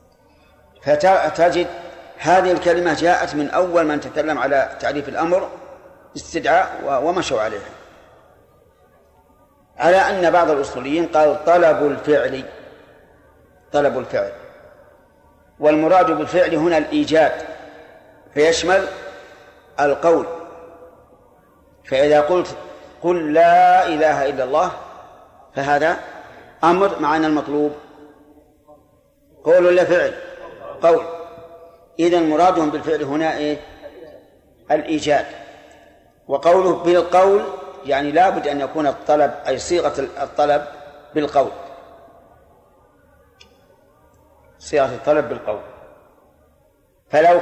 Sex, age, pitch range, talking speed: male, 40-59, 150-175 Hz, 80 wpm